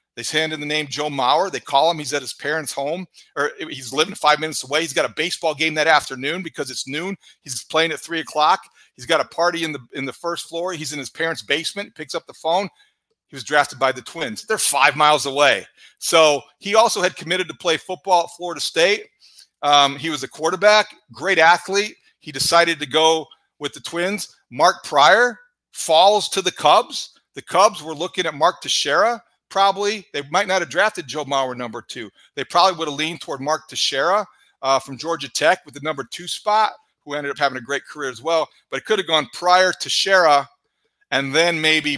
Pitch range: 140-175 Hz